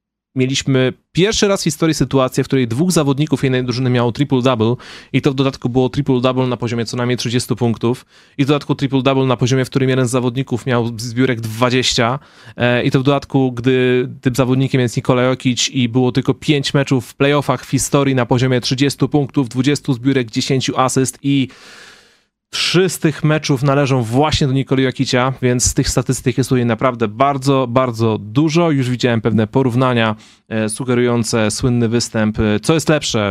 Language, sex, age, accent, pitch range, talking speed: Polish, male, 30-49, native, 115-140 Hz, 180 wpm